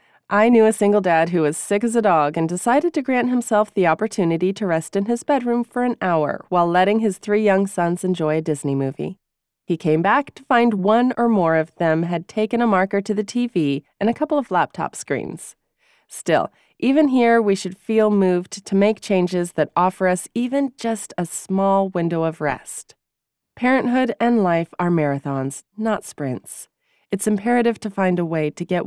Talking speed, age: 195 wpm, 30-49